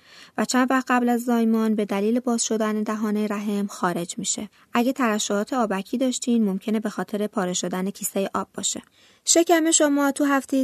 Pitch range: 205-255 Hz